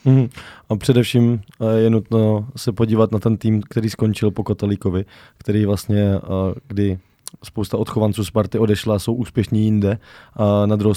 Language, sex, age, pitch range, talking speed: Czech, male, 20-39, 105-120 Hz, 140 wpm